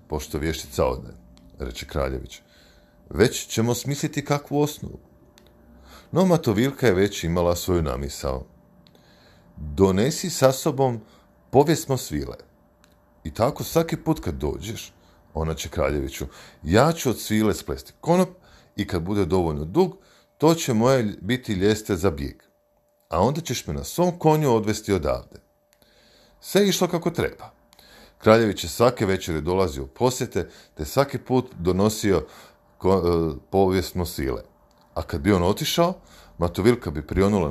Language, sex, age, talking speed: Croatian, male, 40-59, 135 wpm